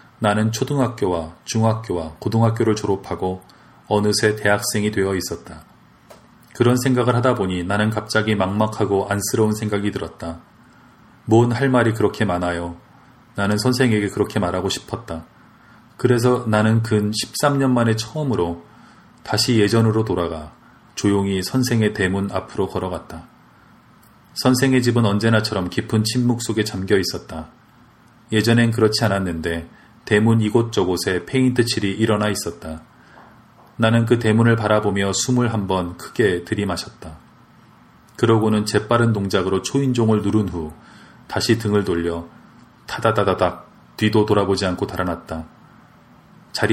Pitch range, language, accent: 95-115 Hz, Korean, native